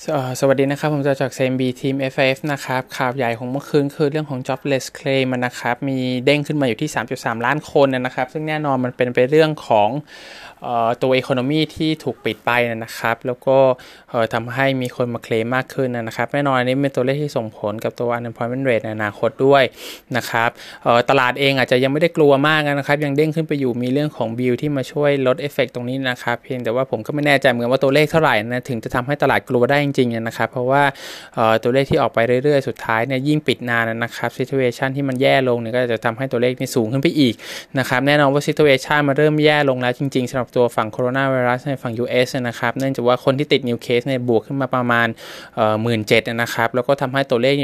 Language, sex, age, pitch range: Thai, male, 20-39, 120-140 Hz